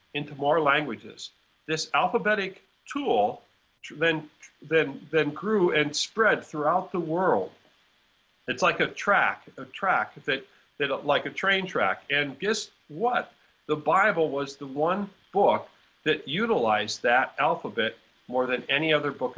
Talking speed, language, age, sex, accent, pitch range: 140 wpm, English, 50-69, male, American, 140-180 Hz